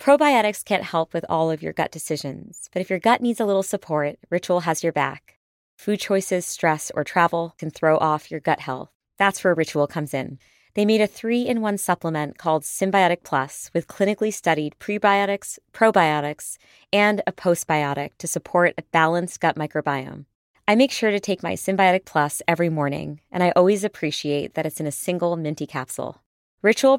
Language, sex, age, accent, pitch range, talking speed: English, female, 30-49, American, 145-190 Hz, 180 wpm